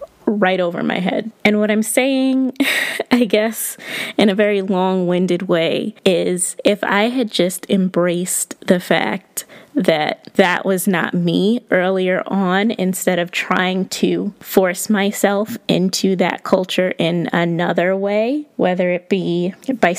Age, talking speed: 20-39, 140 wpm